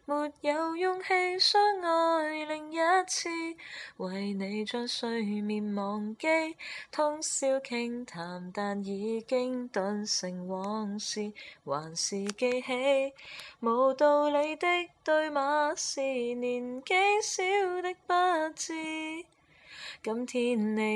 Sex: female